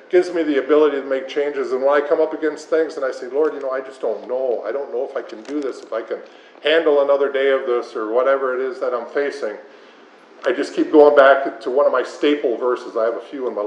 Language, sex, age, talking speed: English, male, 50-69, 280 wpm